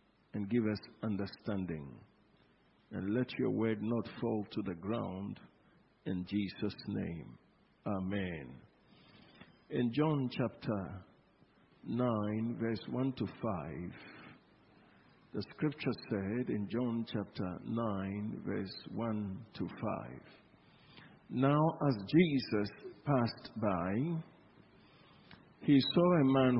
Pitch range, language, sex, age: 105-135 Hz, English, male, 50-69